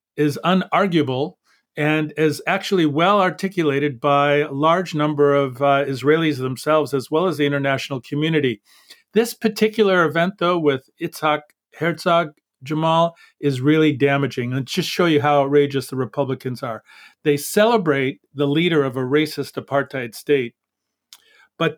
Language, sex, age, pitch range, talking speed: English, male, 40-59, 140-175 Hz, 140 wpm